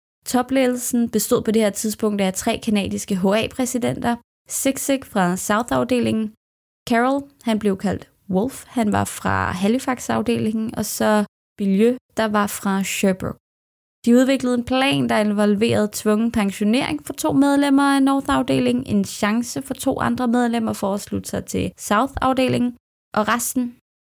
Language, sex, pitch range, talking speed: English, female, 190-235 Hz, 140 wpm